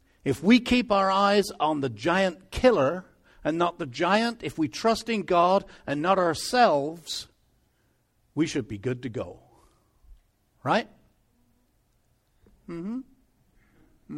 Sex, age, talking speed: male, 60-79, 125 wpm